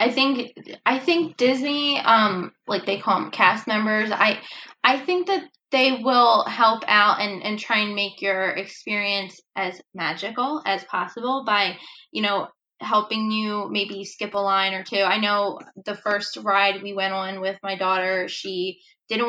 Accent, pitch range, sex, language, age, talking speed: American, 190-225 Hz, female, English, 10-29, 170 wpm